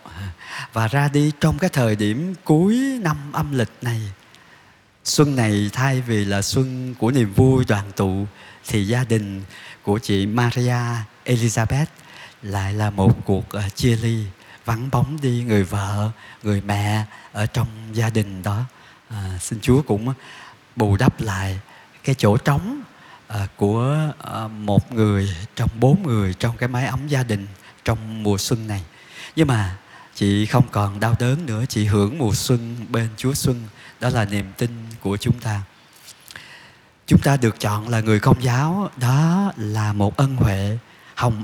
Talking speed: 160 wpm